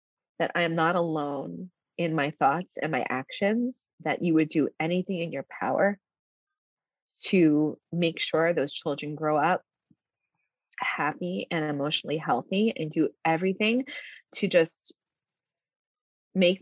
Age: 20-39